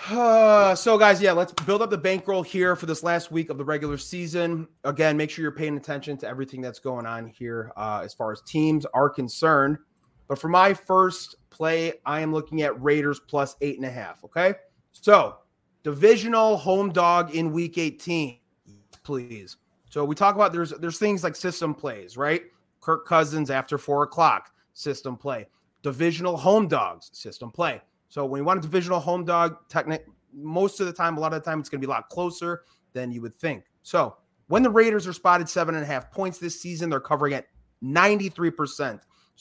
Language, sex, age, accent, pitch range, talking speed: English, male, 30-49, American, 140-175 Hz, 200 wpm